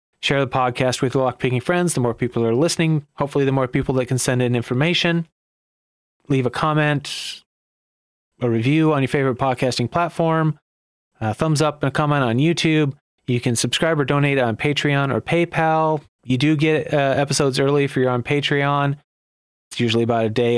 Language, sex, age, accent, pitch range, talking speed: English, male, 30-49, American, 120-150 Hz, 185 wpm